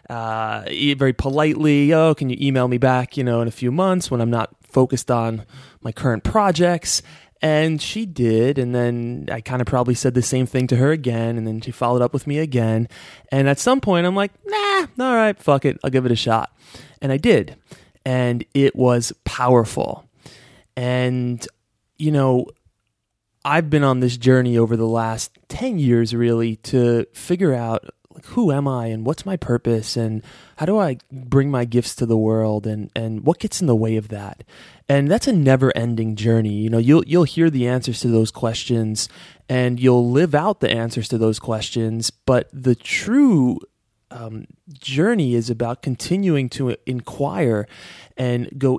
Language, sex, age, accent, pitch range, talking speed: English, male, 20-39, American, 115-145 Hz, 185 wpm